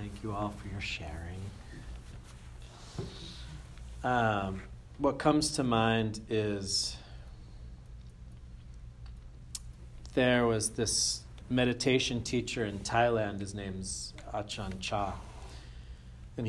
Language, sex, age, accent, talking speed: English, male, 40-59, American, 85 wpm